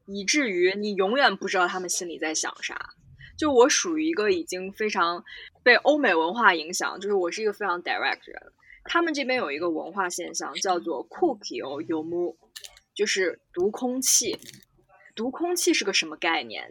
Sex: female